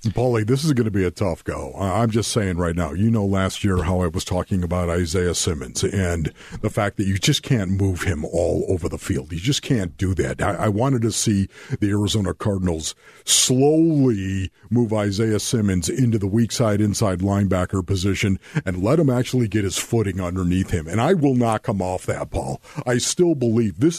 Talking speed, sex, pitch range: 205 wpm, male, 100-135 Hz